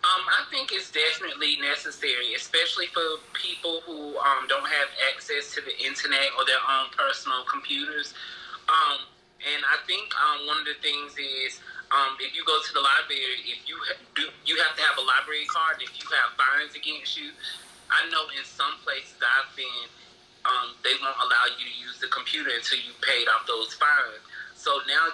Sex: male